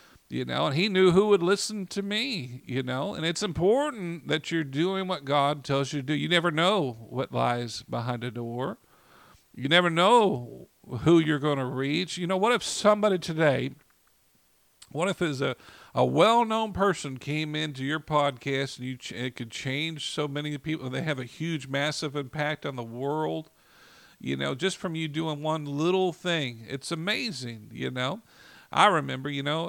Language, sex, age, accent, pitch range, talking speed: English, male, 50-69, American, 130-165 Hz, 185 wpm